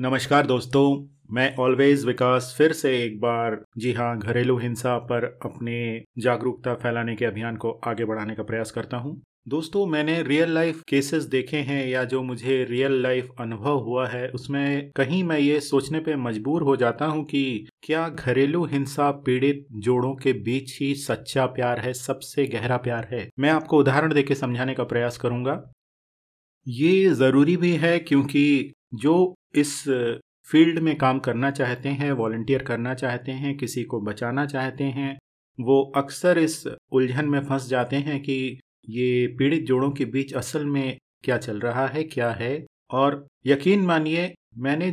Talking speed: 165 wpm